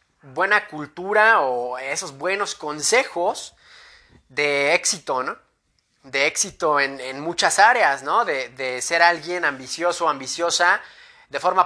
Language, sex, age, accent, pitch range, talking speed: English, male, 20-39, Mexican, 145-175 Hz, 130 wpm